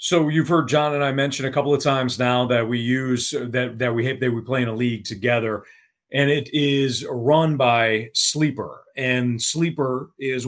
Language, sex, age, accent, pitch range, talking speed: English, male, 40-59, American, 115-135 Hz, 200 wpm